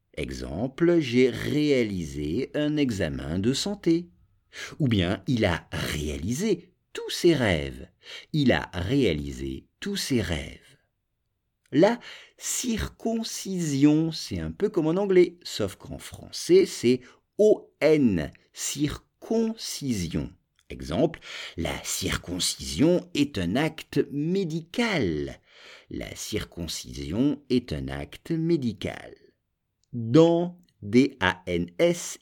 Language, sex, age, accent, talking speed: English, male, 50-69, French, 95 wpm